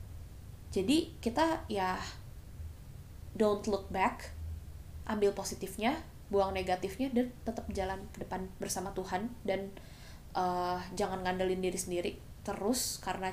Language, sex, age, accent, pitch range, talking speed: Indonesian, female, 10-29, native, 185-245 Hz, 115 wpm